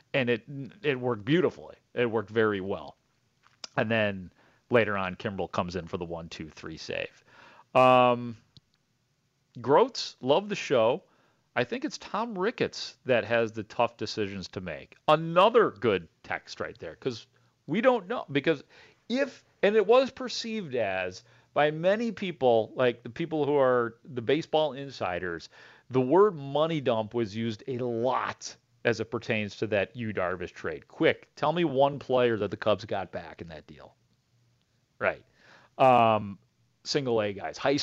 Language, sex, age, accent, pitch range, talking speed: English, male, 40-59, American, 110-150 Hz, 160 wpm